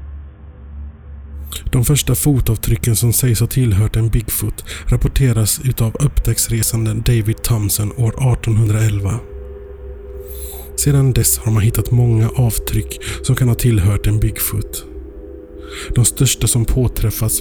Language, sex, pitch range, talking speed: Swedish, male, 80-120 Hz, 115 wpm